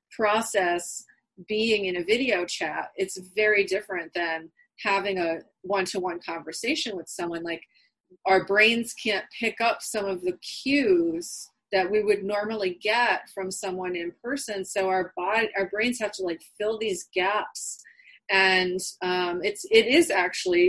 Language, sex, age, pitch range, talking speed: English, female, 30-49, 180-215 Hz, 150 wpm